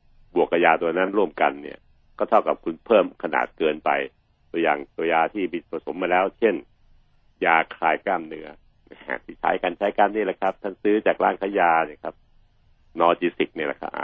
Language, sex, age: Thai, male, 60-79